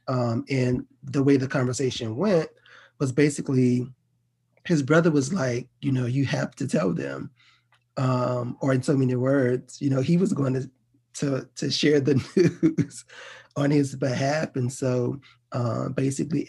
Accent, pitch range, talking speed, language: American, 120-140 Hz, 160 wpm, English